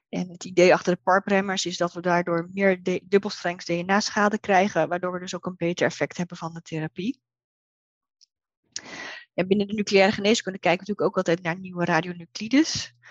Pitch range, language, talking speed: 170-200 Hz, Dutch, 175 wpm